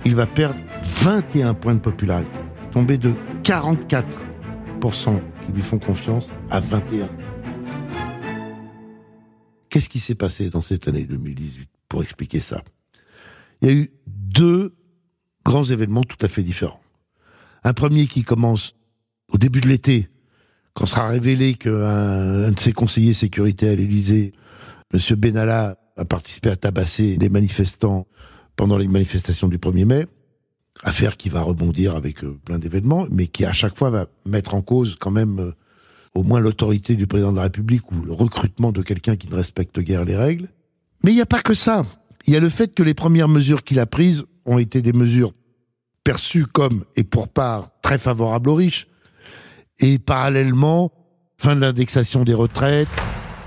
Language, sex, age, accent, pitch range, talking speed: French, male, 60-79, French, 100-135 Hz, 165 wpm